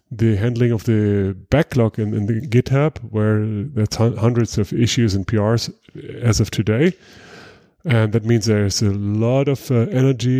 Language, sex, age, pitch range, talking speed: English, male, 30-49, 105-125 Hz, 160 wpm